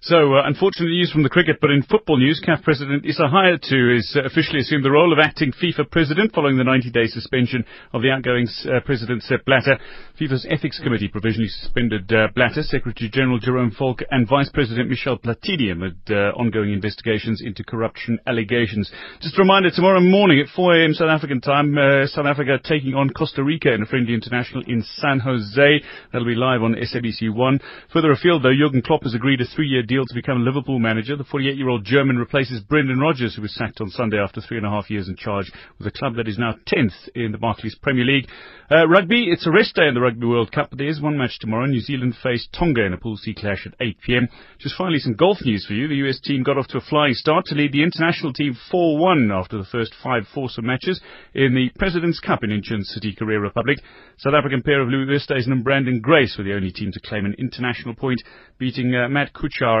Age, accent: 30-49, British